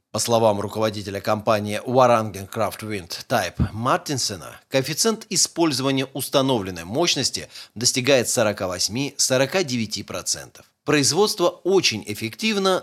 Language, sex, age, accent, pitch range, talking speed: Russian, male, 30-49, native, 110-145 Hz, 85 wpm